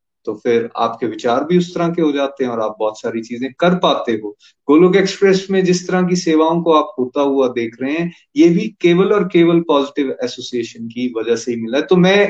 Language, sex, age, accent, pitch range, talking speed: Hindi, male, 30-49, native, 130-175 Hz, 230 wpm